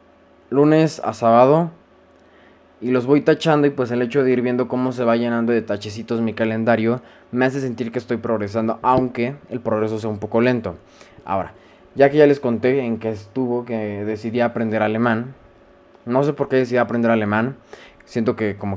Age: 20-39